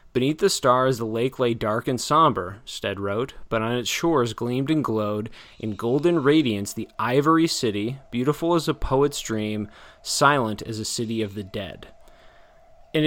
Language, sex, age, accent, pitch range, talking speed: English, male, 20-39, American, 110-130 Hz, 170 wpm